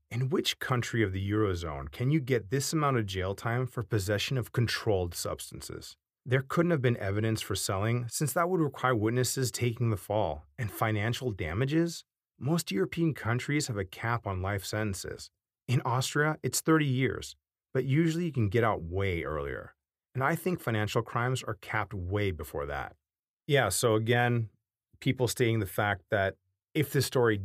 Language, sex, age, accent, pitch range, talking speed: English, male, 30-49, American, 100-130 Hz, 175 wpm